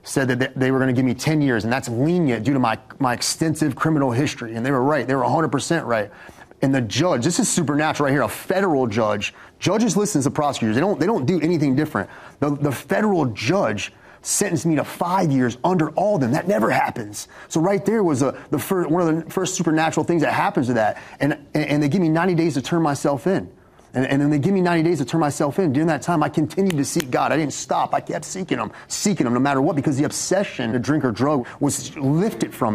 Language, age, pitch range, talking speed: English, 30-49, 135-175 Hz, 250 wpm